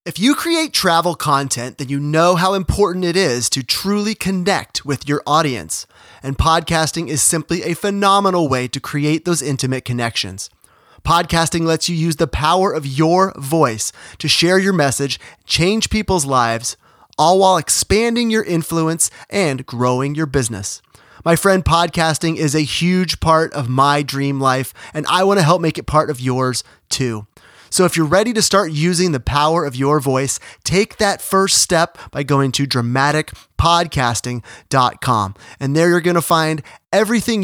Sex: male